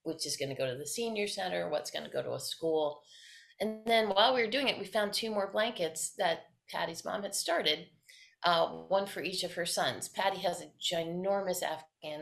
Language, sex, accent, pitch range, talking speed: English, female, American, 150-215 Hz, 210 wpm